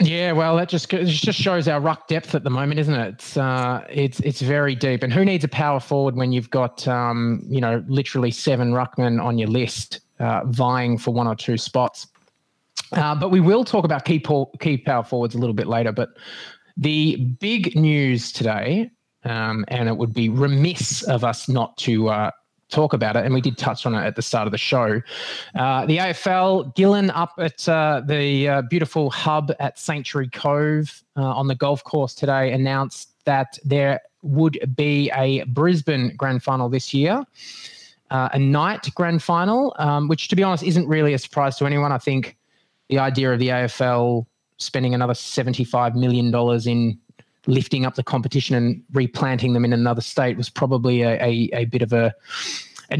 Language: English